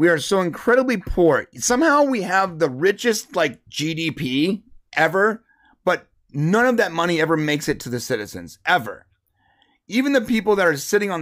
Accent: American